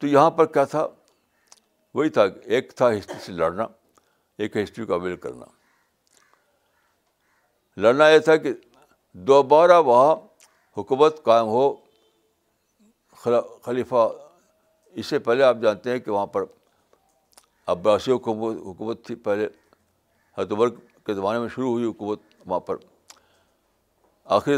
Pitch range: 105-155 Hz